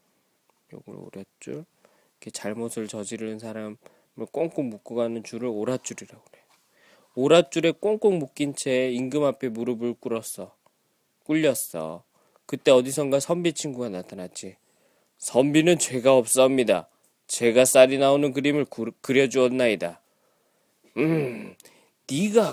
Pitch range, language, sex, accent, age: 120-155 Hz, Korean, male, native, 20-39